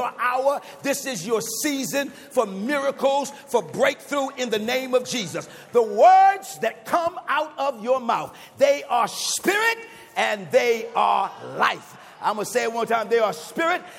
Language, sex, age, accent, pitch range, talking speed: English, male, 50-69, American, 195-245 Hz, 165 wpm